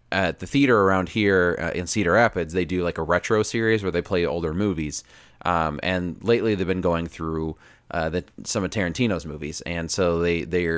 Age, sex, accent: 30-49, male, American